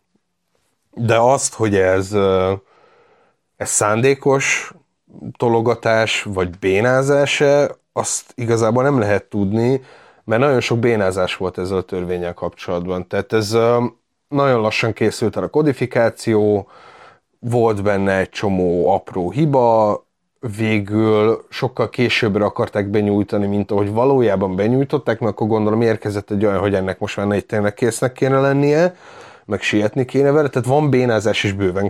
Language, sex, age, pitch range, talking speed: Hungarian, male, 30-49, 100-120 Hz, 130 wpm